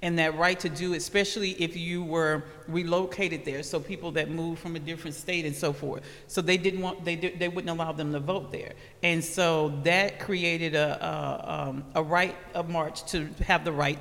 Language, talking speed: English, 215 wpm